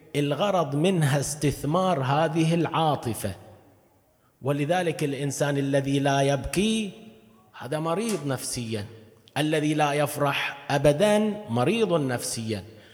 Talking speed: 90 wpm